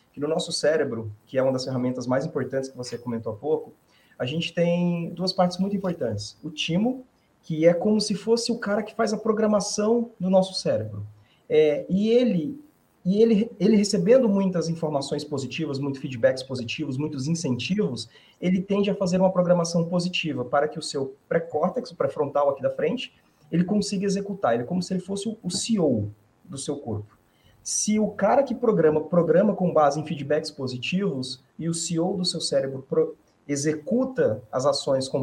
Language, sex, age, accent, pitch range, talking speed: Portuguese, male, 30-49, Brazilian, 135-185 Hz, 175 wpm